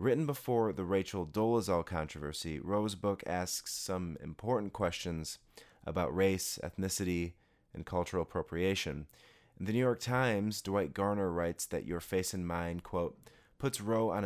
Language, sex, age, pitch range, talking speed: English, male, 30-49, 80-100 Hz, 145 wpm